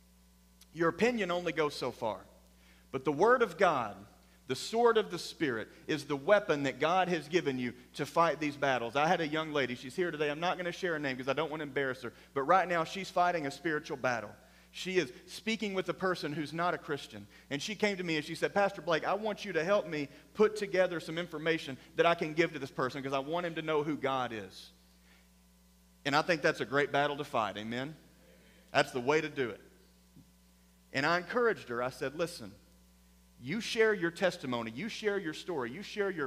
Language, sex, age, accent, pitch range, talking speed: English, male, 40-59, American, 125-175 Hz, 230 wpm